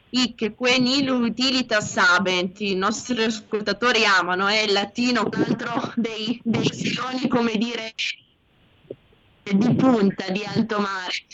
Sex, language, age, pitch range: female, Italian, 20-39, 190-235 Hz